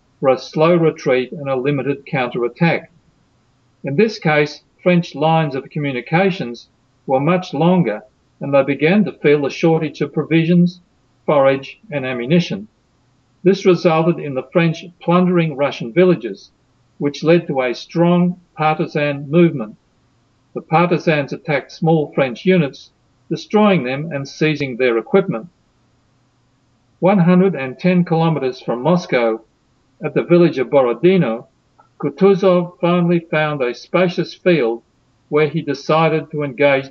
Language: English